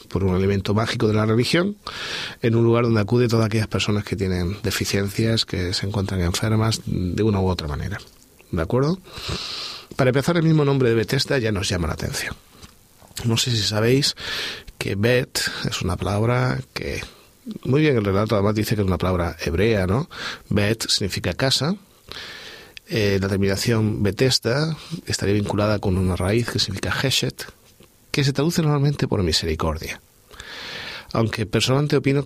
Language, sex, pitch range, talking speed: Spanish, male, 100-125 Hz, 160 wpm